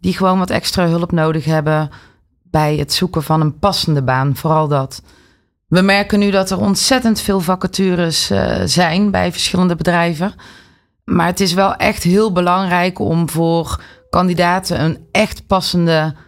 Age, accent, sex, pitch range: 30-49, Dutch, female, 155-185 Hz